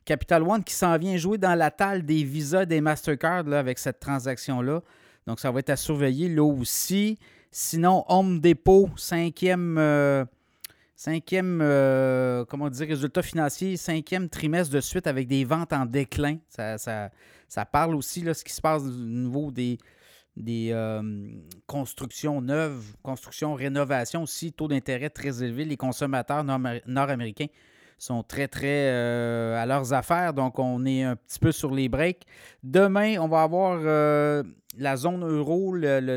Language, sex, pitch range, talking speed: French, male, 130-165 Hz, 165 wpm